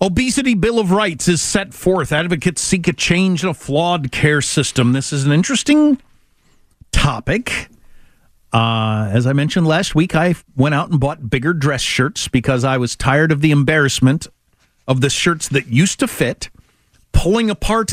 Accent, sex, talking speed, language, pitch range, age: American, male, 170 wpm, English, 120-180 Hz, 50-69